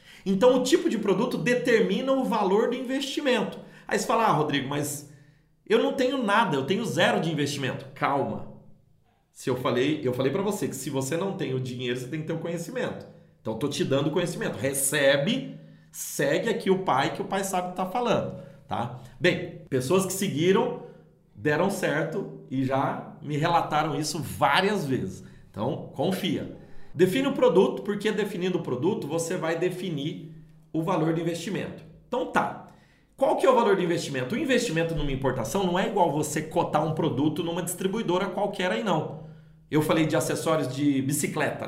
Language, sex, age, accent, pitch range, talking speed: Portuguese, male, 40-59, Brazilian, 145-190 Hz, 185 wpm